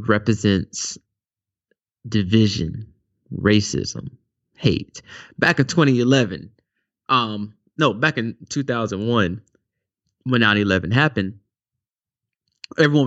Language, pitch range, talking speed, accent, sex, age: English, 100-120 Hz, 75 wpm, American, male, 30-49